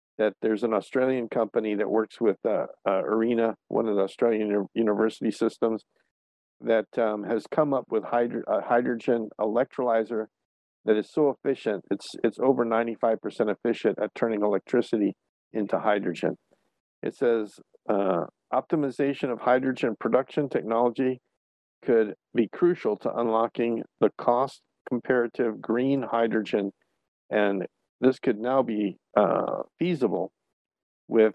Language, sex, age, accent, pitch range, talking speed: English, male, 50-69, American, 110-125 Hz, 130 wpm